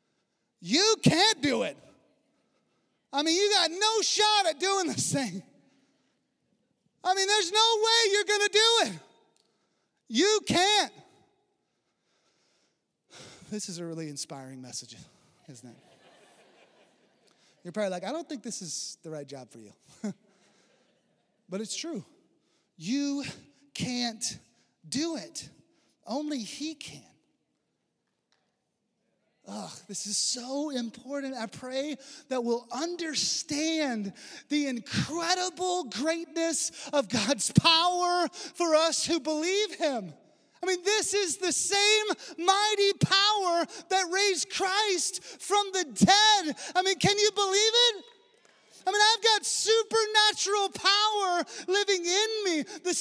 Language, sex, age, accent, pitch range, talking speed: English, male, 30-49, American, 285-400 Hz, 120 wpm